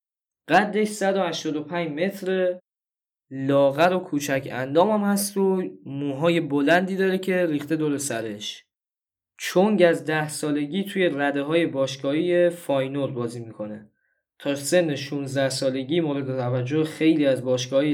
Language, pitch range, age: Persian, 135-175 Hz, 10-29